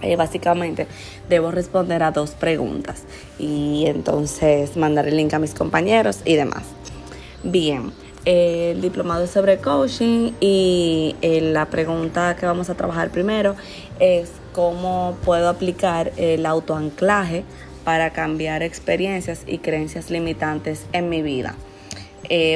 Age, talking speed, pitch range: 20-39, 130 wpm, 160-180 Hz